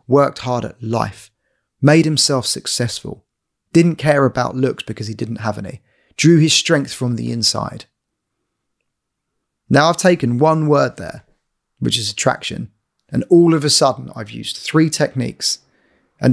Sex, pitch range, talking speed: male, 130-155 Hz, 150 wpm